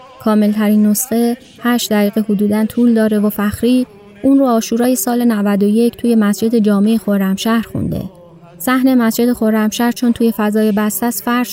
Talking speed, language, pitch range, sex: 140 wpm, Persian, 200-235 Hz, female